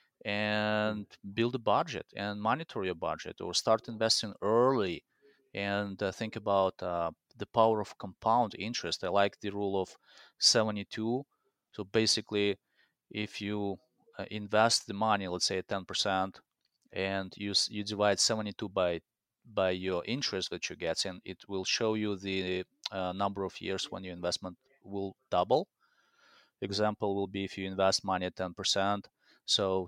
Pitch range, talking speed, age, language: 95-110 Hz, 155 wpm, 30-49, English